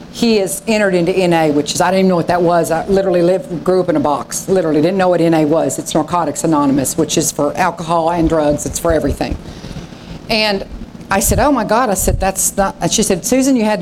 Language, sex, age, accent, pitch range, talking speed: English, female, 50-69, American, 170-210 Hz, 240 wpm